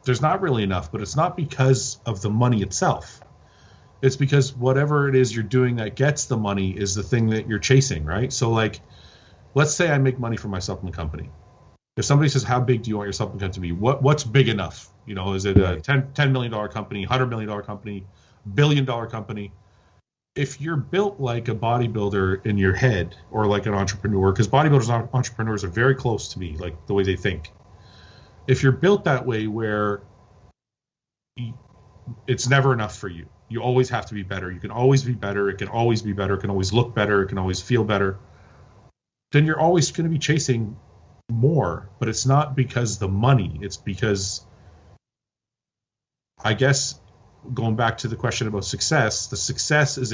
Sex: male